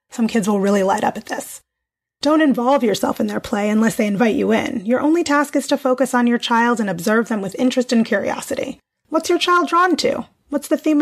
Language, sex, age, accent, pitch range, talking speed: English, female, 30-49, American, 230-290 Hz, 235 wpm